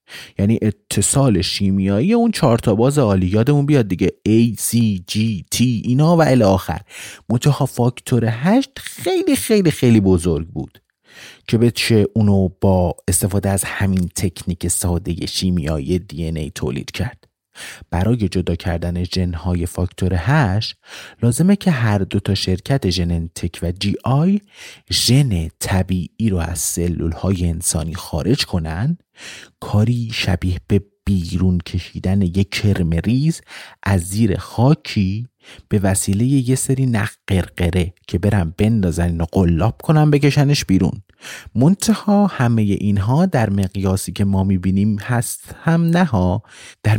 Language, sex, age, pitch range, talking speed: Persian, male, 30-49, 95-125 Hz, 125 wpm